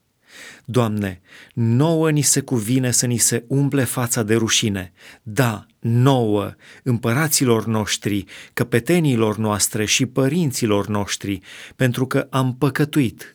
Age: 30-49